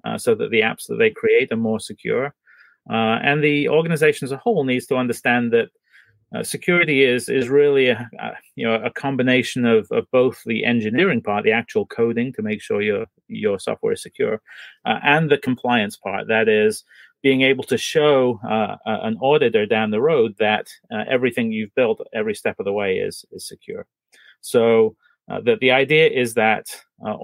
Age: 30-49